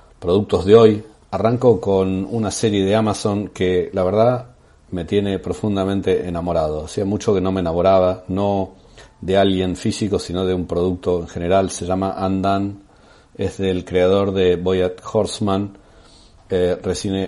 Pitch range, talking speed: 90-105 Hz, 150 wpm